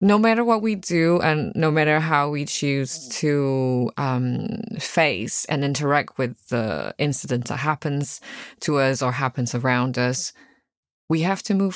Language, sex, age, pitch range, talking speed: English, female, 20-39, 135-170 Hz, 160 wpm